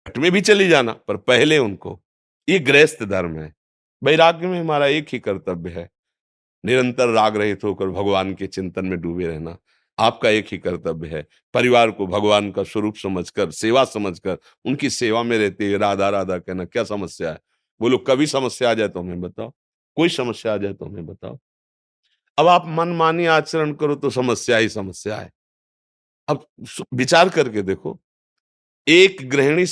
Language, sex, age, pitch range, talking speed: Hindi, male, 50-69, 95-140 Hz, 170 wpm